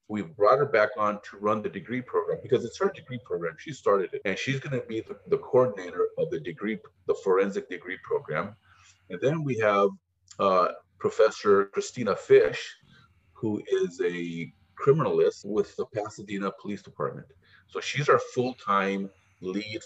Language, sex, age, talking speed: English, male, 40-59, 165 wpm